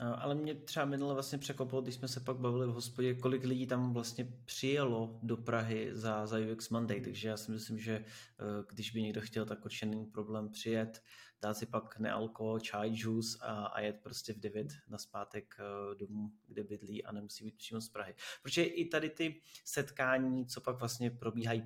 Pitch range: 110-120 Hz